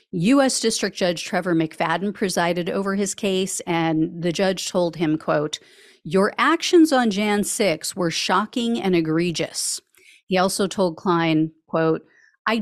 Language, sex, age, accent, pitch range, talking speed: English, female, 40-59, American, 170-220 Hz, 145 wpm